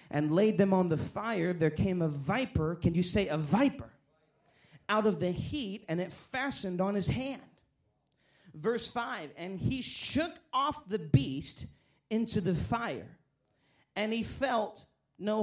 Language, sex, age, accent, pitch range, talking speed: English, male, 40-59, American, 145-210 Hz, 155 wpm